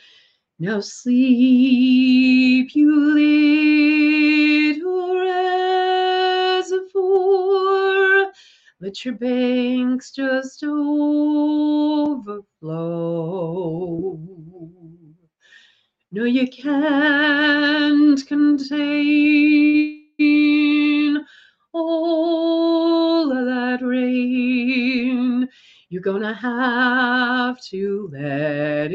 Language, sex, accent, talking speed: English, female, American, 50 wpm